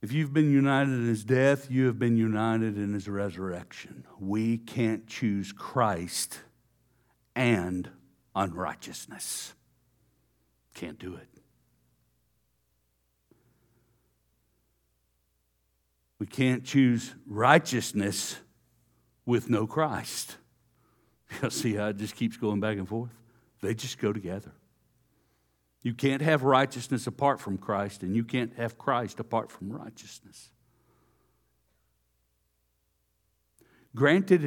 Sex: male